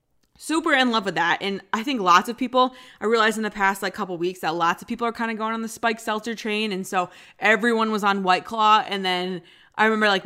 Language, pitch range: English, 185-235 Hz